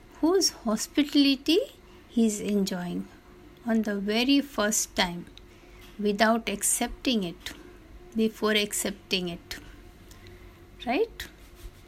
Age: 60-79